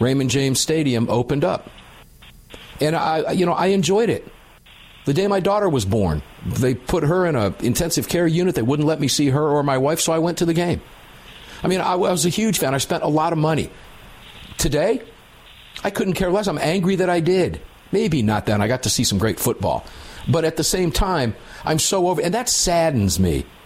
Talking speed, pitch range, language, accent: 220 wpm, 115-170 Hz, English, American